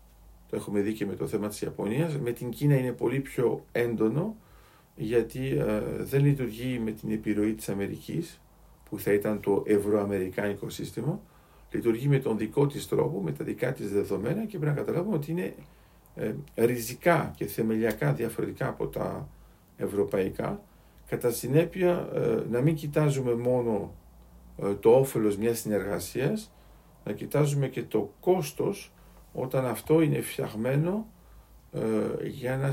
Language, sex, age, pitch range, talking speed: Greek, male, 50-69, 110-150 Hz, 140 wpm